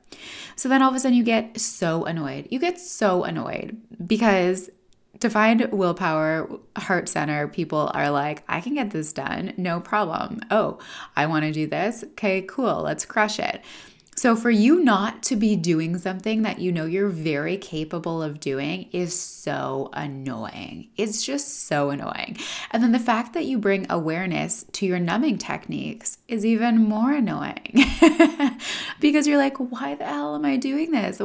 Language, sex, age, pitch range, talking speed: English, female, 20-39, 160-245 Hz, 175 wpm